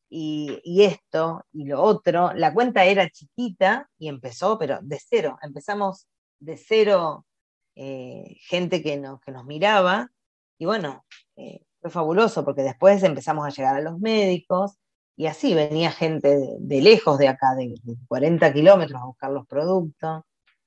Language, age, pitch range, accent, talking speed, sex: Spanish, 20-39, 145-195 Hz, Argentinian, 155 wpm, female